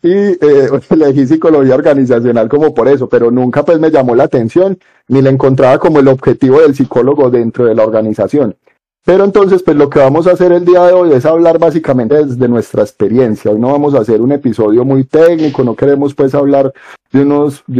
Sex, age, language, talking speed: male, 30-49, Spanish, 205 wpm